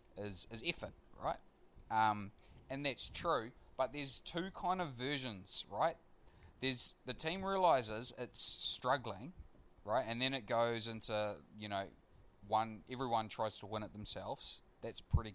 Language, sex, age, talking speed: English, male, 20-39, 150 wpm